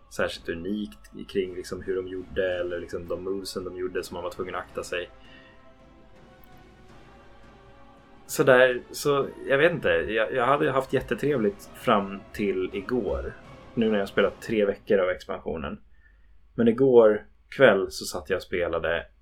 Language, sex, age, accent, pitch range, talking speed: Swedish, male, 20-39, native, 80-120 Hz, 160 wpm